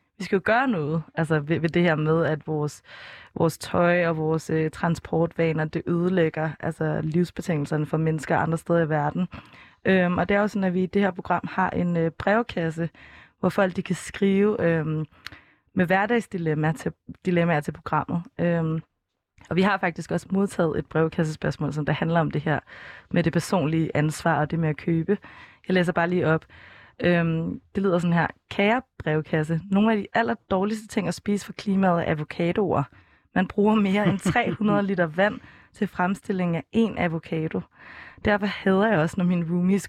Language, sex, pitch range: Danish, female, 160-200 Hz